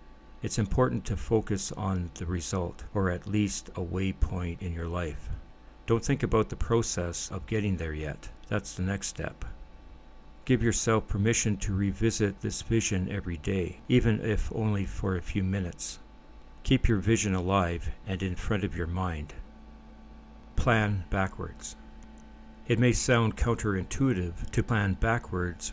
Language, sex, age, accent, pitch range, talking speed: English, male, 60-79, American, 90-110 Hz, 145 wpm